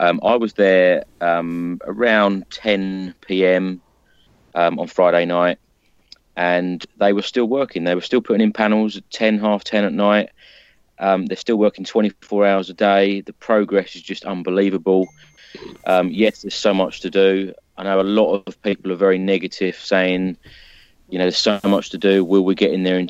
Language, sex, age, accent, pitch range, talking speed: English, male, 30-49, British, 85-100 Hz, 185 wpm